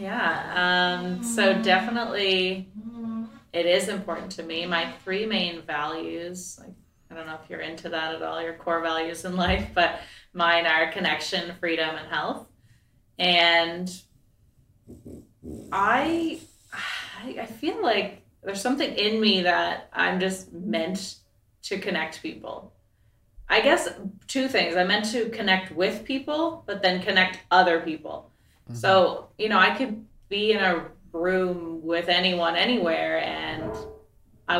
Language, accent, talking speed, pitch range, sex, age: English, American, 140 wpm, 165-205 Hz, female, 30-49